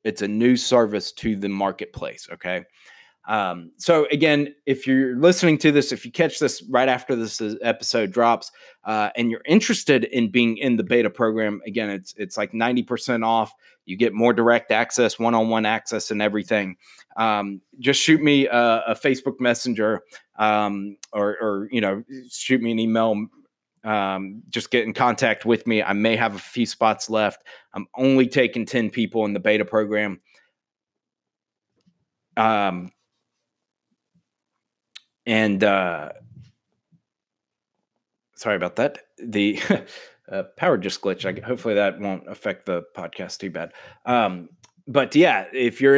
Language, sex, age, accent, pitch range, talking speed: English, male, 30-49, American, 105-130 Hz, 155 wpm